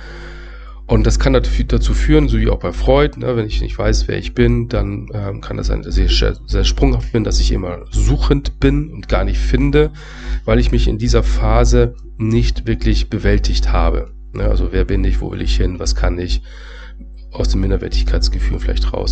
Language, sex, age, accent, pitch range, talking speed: German, male, 40-59, German, 85-120 Hz, 205 wpm